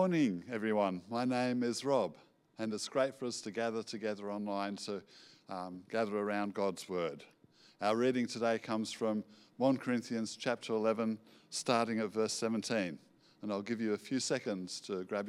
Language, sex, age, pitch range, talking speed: English, male, 50-69, 105-130 Hz, 175 wpm